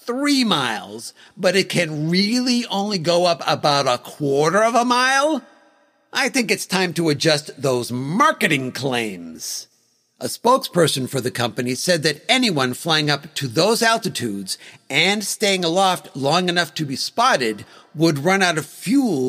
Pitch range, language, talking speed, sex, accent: 140-200 Hz, English, 155 wpm, male, American